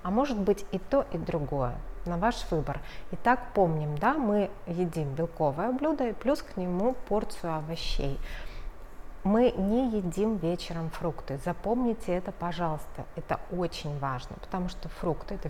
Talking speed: 145 wpm